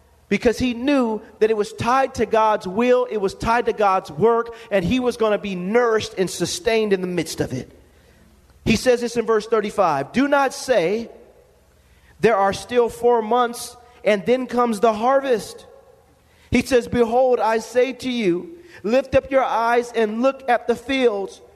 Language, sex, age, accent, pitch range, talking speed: English, male, 40-59, American, 220-265 Hz, 180 wpm